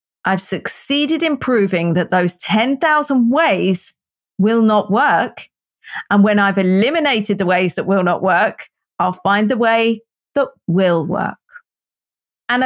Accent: British